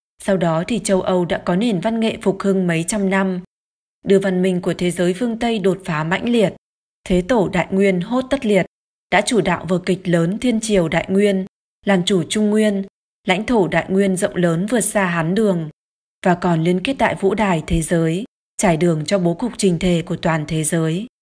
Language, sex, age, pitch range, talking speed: Vietnamese, female, 20-39, 175-205 Hz, 220 wpm